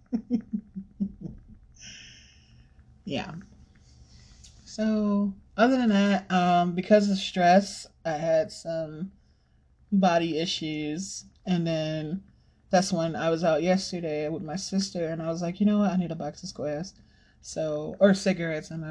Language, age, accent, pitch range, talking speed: English, 30-49, American, 155-200 Hz, 135 wpm